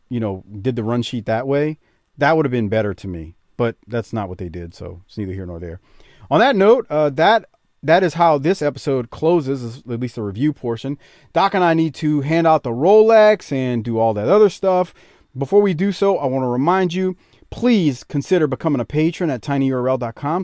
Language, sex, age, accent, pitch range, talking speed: English, male, 40-59, American, 110-150 Hz, 215 wpm